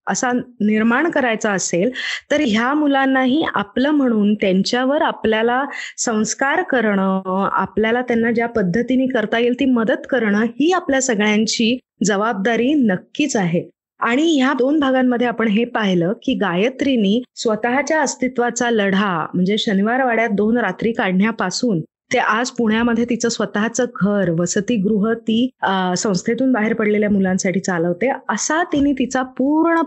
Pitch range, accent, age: 205-255 Hz, native, 20-39